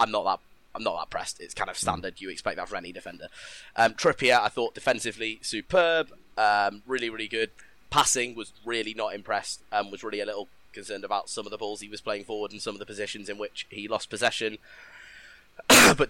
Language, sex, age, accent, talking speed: English, male, 20-39, British, 215 wpm